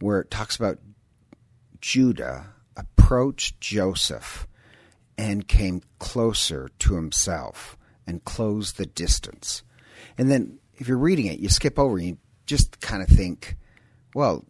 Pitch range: 95-120 Hz